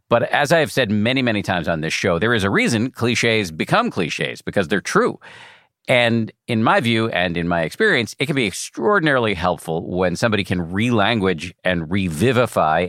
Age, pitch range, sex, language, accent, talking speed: 50-69, 90-110 Hz, male, English, American, 185 wpm